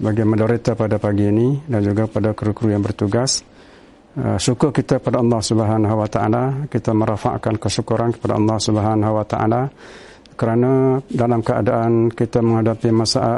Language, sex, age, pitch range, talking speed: Indonesian, male, 60-79, 110-125 Hz, 145 wpm